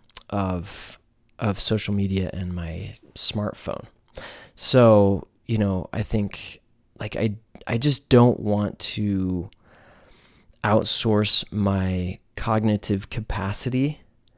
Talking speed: 95 wpm